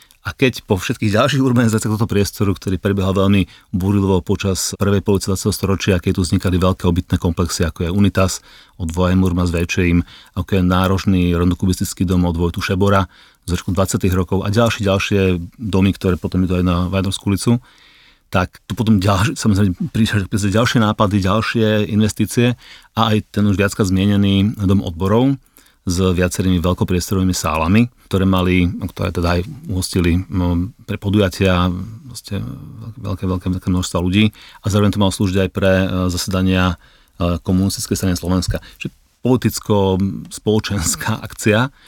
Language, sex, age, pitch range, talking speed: Slovak, male, 40-59, 90-105 Hz, 155 wpm